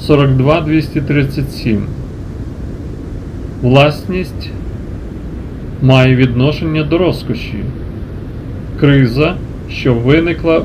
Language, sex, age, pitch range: English, male, 40-59, 115-150 Hz